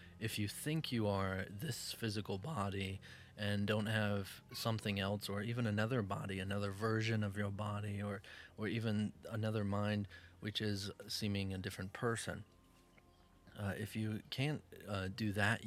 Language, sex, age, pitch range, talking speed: English, male, 30-49, 95-110 Hz, 155 wpm